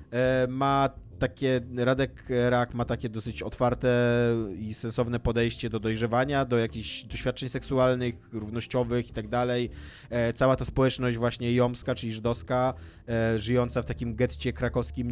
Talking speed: 130 wpm